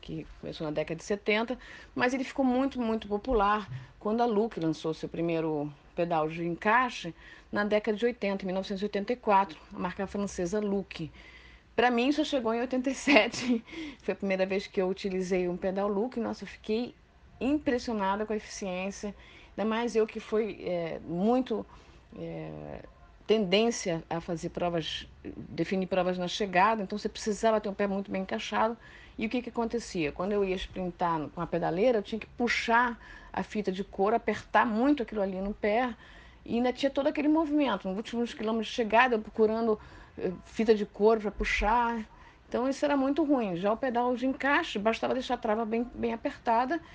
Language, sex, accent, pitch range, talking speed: Portuguese, female, Brazilian, 190-240 Hz, 180 wpm